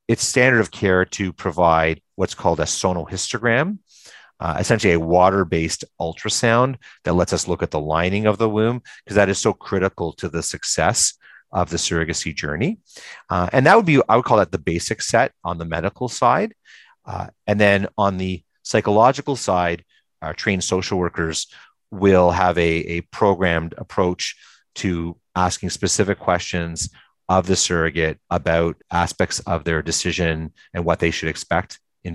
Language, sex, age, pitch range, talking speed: English, male, 30-49, 85-110 Hz, 165 wpm